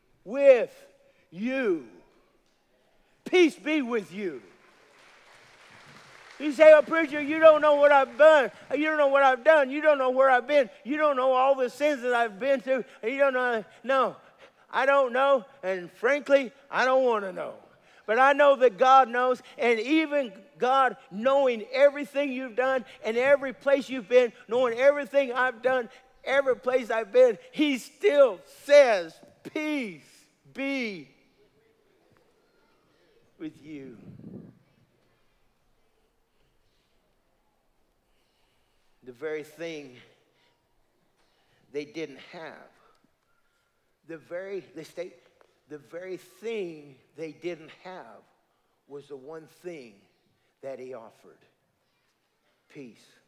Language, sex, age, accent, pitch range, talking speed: English, male, 50-69, American, 170-280 Hz, 125 wpm